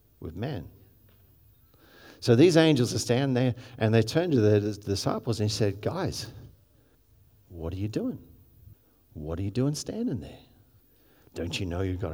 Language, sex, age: English, male, 50-69